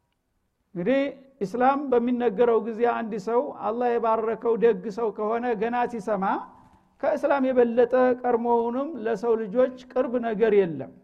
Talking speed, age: 115 wpm, 60-79